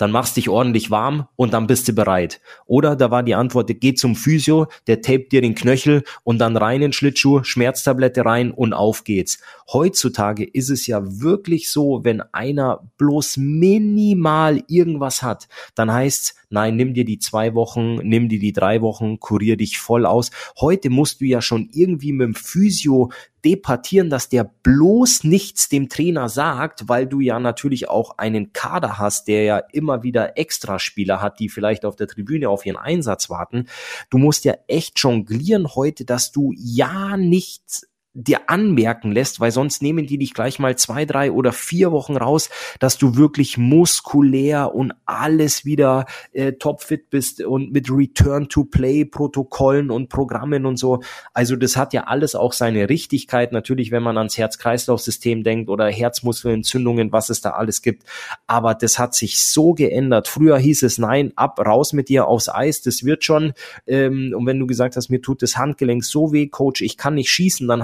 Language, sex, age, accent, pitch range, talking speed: German, male, 30-49, German, 115-145 Hz, 180 wpm